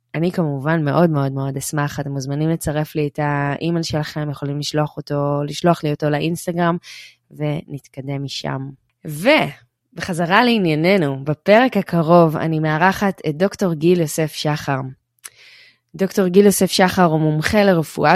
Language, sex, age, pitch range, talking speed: Hebrew, female, 20-39, 145-180 Hz, 130 wpm